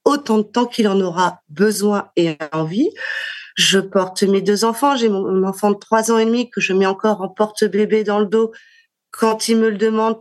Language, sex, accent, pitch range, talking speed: French, female, French, 195-240 Hz, 210 wpm